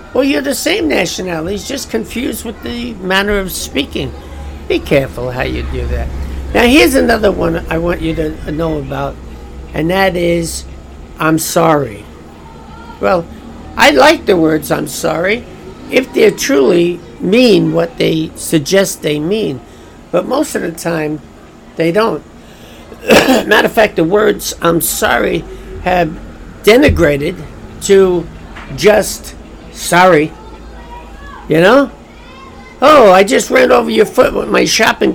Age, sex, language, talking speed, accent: 60-79, male, English, 135 wpm, American